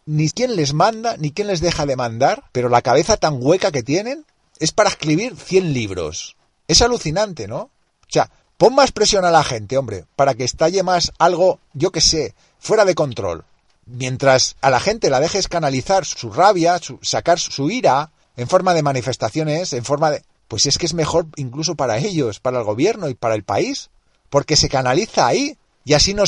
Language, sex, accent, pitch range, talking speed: Spanish, male, Spanish, 135-190 Hz, 200 wpm